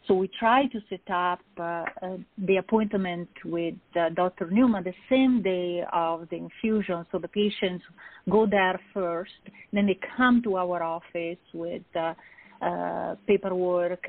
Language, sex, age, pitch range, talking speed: English, female, 40-59, 170-205 Hz, 155 wpm